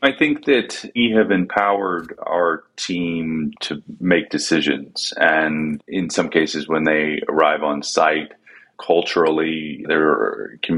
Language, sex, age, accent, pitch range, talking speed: English, male, 30-49, American, 75-85 Hz, 130 wpm